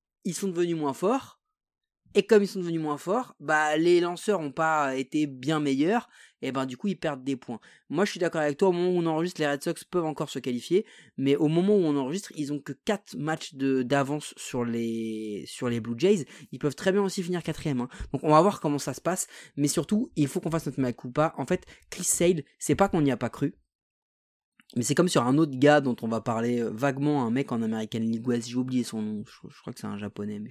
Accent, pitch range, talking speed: French, 135-190 Hz, 260 wpm